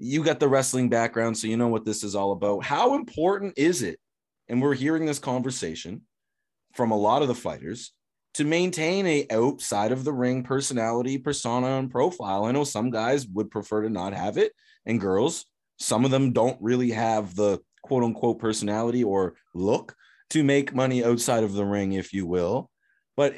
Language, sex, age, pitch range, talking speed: English, male, 30-49, 110-150 Hz, 180 wpm